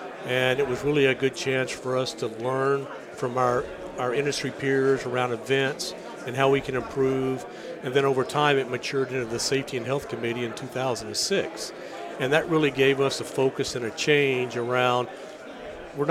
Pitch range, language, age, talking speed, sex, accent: 130-140 Hz, English, 50-69, 185 wpm, male, American